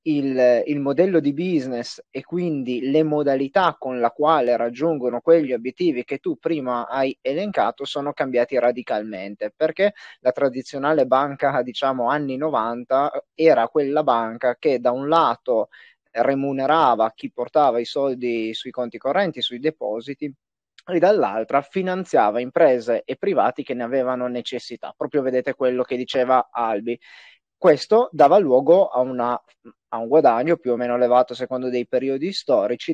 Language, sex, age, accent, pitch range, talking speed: Italian, male, 30-49, native, 125-155 Hz, 140 wpm